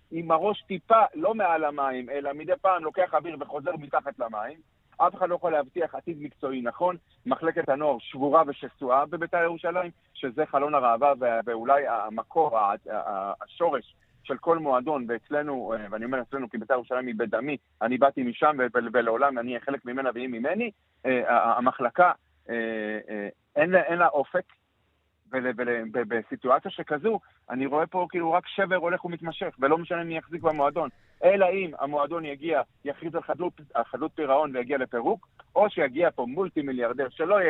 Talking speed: 160 wpm